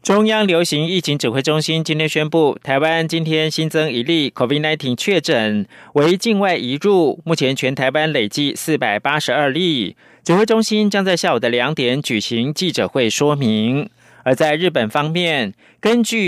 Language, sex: German, male